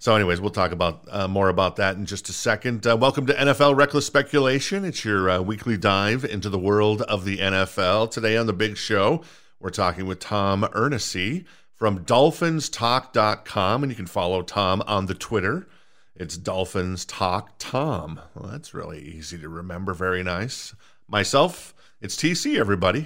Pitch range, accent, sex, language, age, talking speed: 95-120 Hz, American, male, English, 50-69, 165 wpm